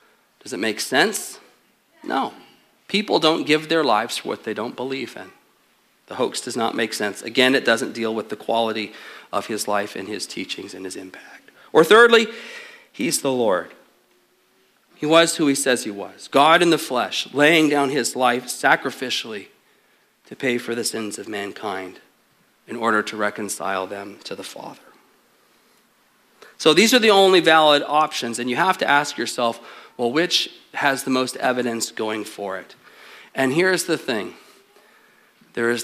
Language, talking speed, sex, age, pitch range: English, 170 wpm, male, 40-59, 110-150 Hz